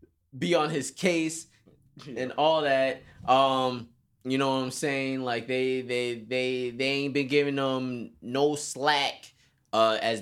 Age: 20-39